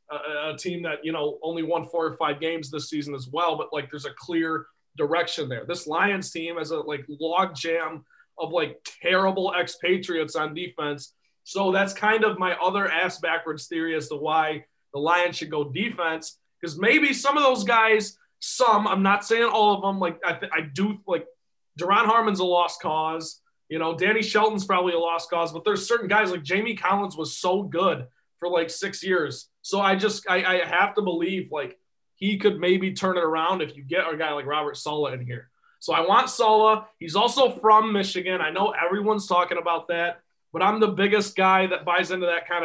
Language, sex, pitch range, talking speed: English, male, 165-205 Hz, 210 wpm